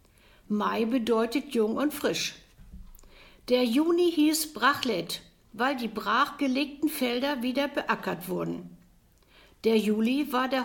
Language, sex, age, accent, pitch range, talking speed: German, female, 60-79, German, 210-285 Hz, 115 wpm